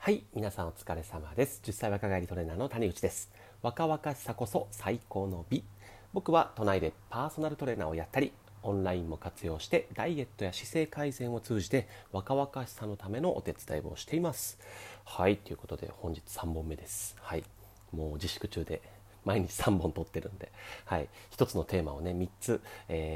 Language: Japanese